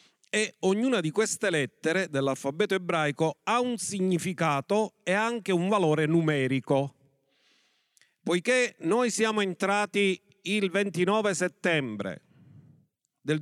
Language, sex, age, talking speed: Italian, male, 40-59, 105 wpm